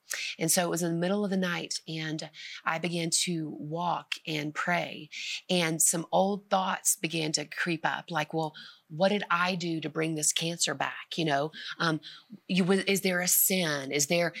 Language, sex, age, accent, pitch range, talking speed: English, female, 30-49, American, 160-200 Hz, 190 wpm